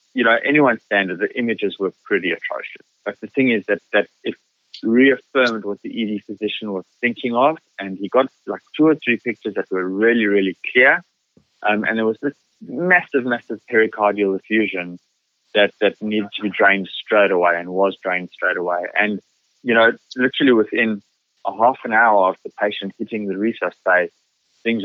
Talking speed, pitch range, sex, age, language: 185 wpm, 95-115 Hz, male, 20-39, English